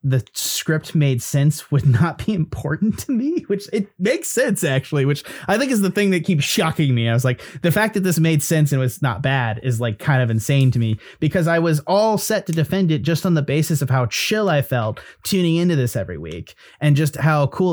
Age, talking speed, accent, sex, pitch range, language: 20-39, 240 wpm, American, male, 125-175 Hz, English